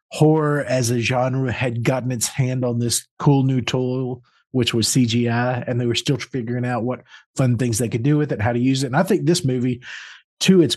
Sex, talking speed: male, 230 wpm